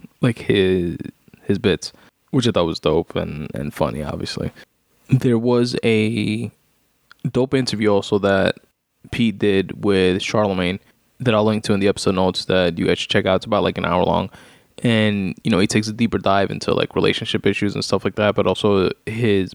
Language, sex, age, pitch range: English, male, 20-39, 95-110 Hz